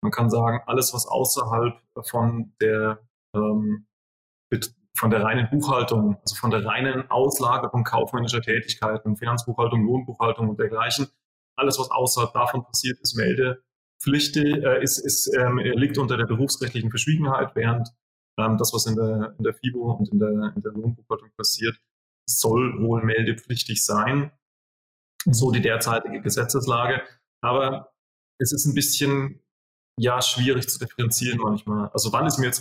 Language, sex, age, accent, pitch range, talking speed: German, male, 30-49, German, 115-135 Hz, 135 wpm